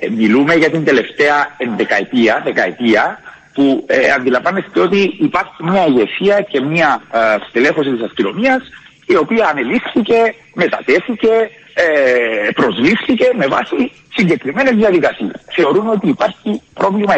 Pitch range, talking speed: 145-230 Hz, 105 wpm